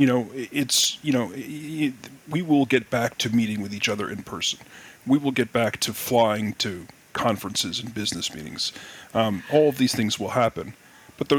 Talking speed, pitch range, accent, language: 185 wpm, 110-140 Hz, American, English